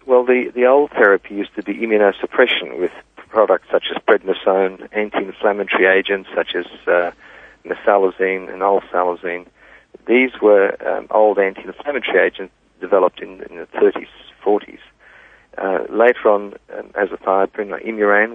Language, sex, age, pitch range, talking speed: English, male, 50-69, 95-125 Hz, 135 wpm